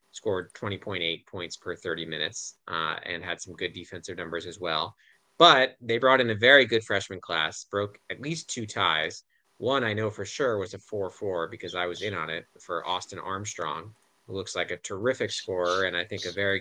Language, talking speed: English, 210 wpm